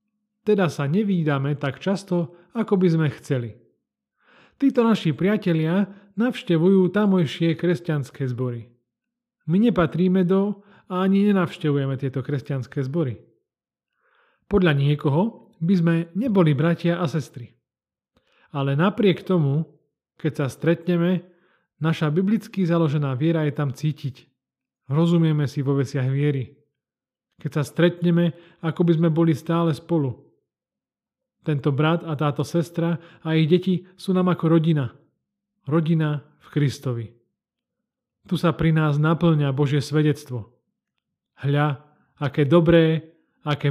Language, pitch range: Slovak, 140-180 Hz